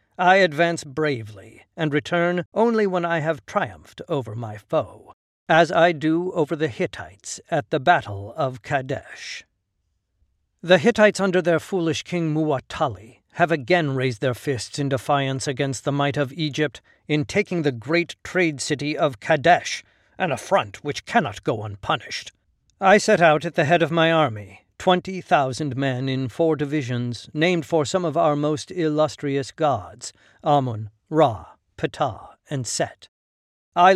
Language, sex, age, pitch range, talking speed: English, male, 50-69, 125-170 Hz, 150 wpm